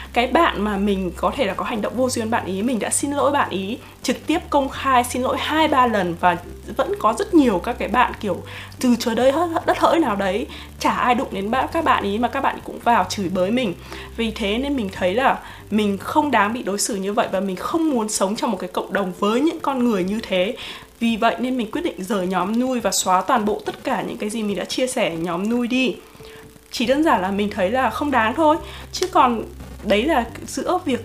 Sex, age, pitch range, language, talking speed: female, 20-39, 195-260 Hz, Vietnamese, 255 wpm